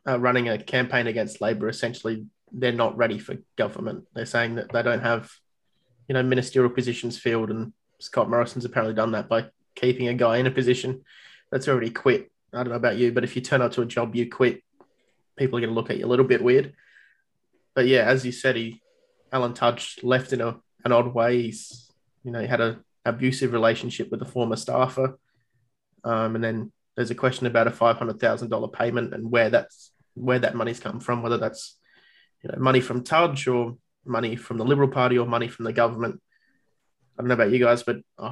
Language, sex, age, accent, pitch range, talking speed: English, male, 20-39, Australian, 115-130 Hz, 210 wpm